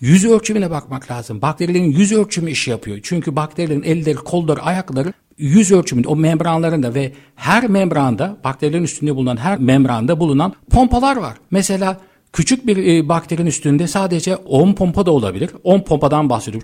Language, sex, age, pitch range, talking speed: Turkish, male, 60-79, 135-185 Hz, 150 wpm